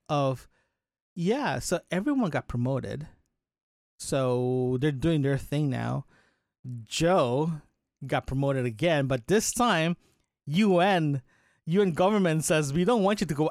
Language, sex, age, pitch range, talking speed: English, male, 30-49, 135-170 Hz, 130 wpm